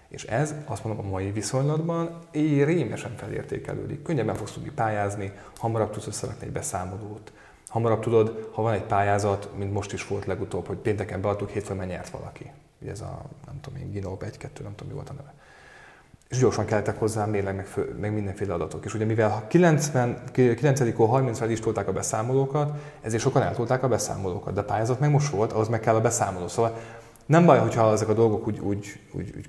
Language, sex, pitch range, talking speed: Hungarian, male, 105-135 Hz, 190 wpm